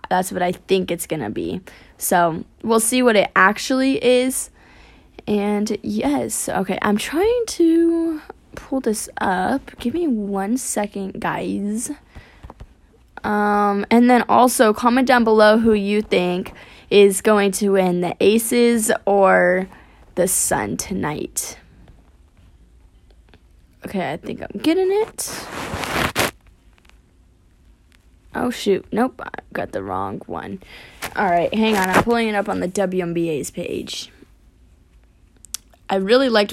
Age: 20-39